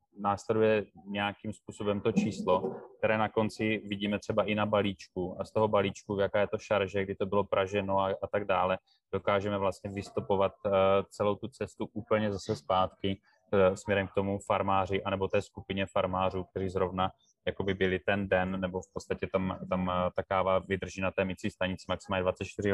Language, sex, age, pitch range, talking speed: Czech, male, 20-39, 90-100 Hz, 170 wpm